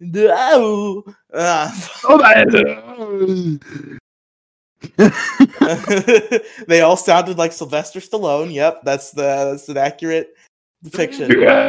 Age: 20-39